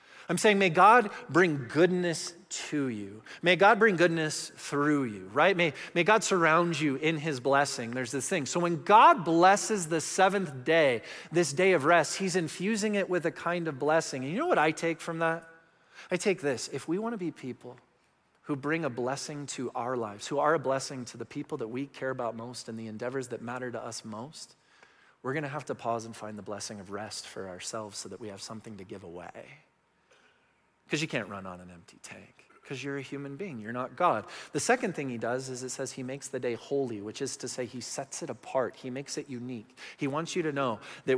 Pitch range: 120-165 Hz